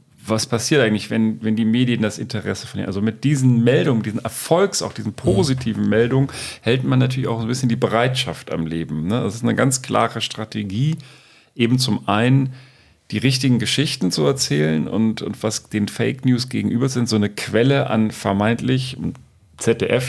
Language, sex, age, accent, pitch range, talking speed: German, male, 40-59, German, 105-130 Hz, 175 wpm